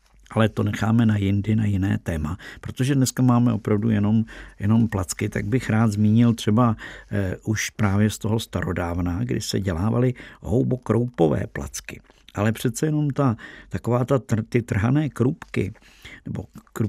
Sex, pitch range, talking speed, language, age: male, 105-120 Hz, 145 wpm, Czech, 50-69